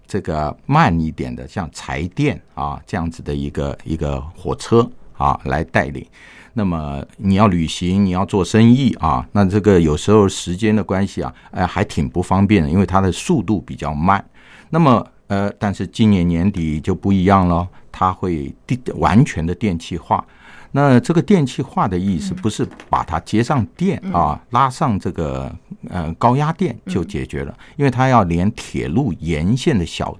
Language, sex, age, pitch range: Chinese, male, 50-69, 80-110 Hz